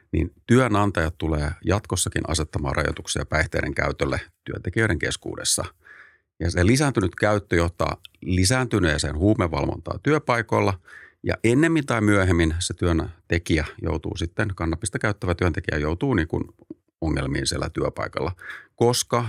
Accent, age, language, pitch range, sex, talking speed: native, 40-59, Finnish, 80-105 Hz, male, 110 wpm